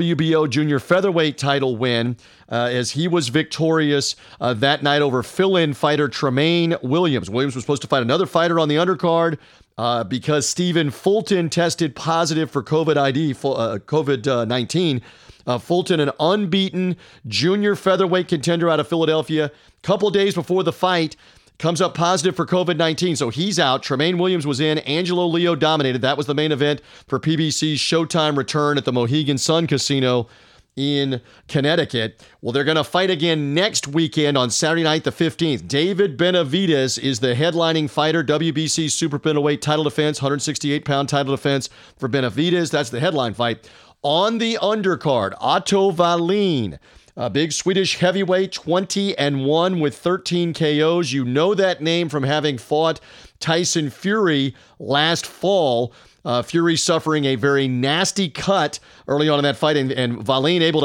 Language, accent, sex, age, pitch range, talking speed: English, American, male, 40-59, 135-170 Hz, 160 wpm